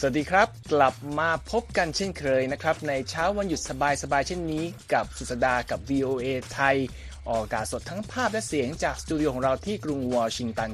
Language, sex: Thai, male